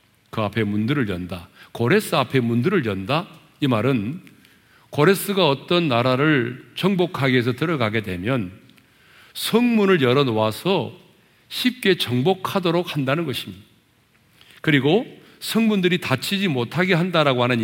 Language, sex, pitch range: Korean, male, 115-180 Hz